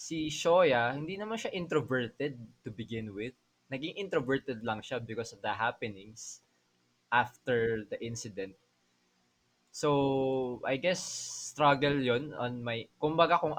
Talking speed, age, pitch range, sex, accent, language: 130 wpm, 20-39, 110-140 Hz, male, Filipino, English